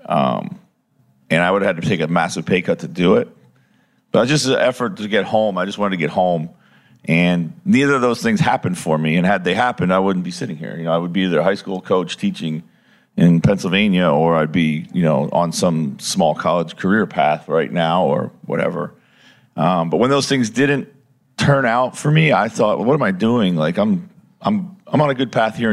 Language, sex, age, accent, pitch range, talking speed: English, male, 40-59, American, 90-120 Hz, 230 wpm